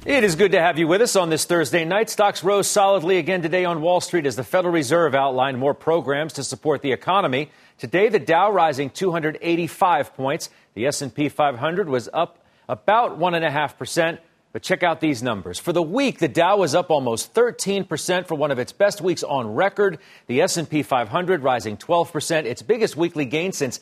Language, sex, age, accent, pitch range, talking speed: English, male, 40-59, American, 140-185 Hz, 205 wpm